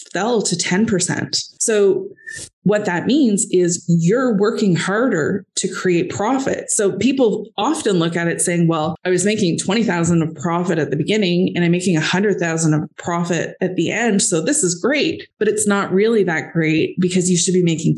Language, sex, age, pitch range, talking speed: English, female, 20-39, 170-205 Hz, 185 wpm